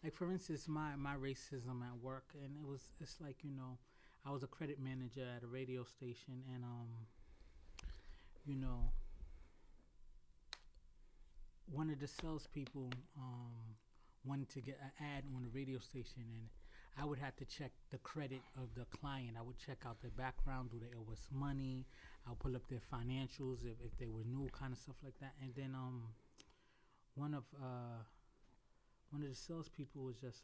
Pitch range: 115-135 Hz